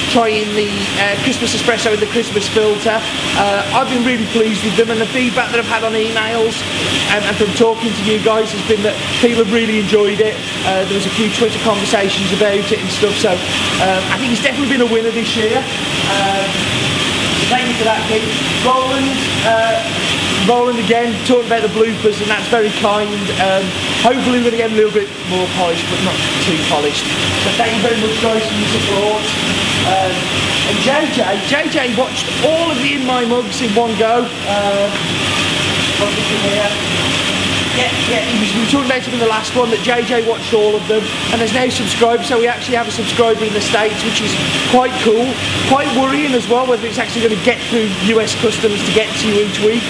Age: 30-49